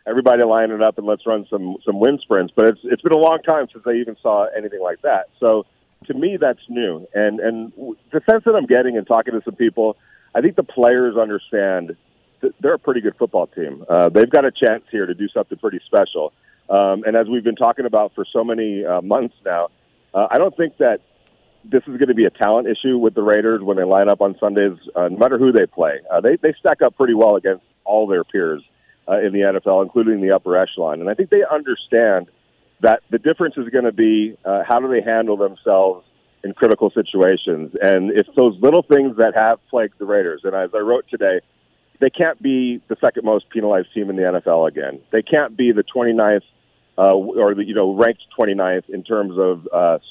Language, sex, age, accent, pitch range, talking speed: English, male, 40-59, American, 100-130 Hz, 225 wpm